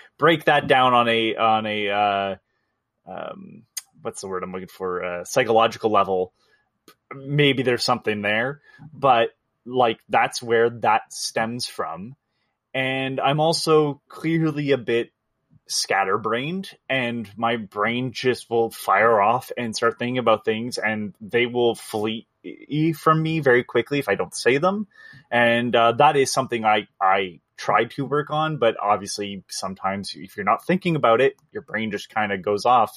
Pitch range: 105-135 Hz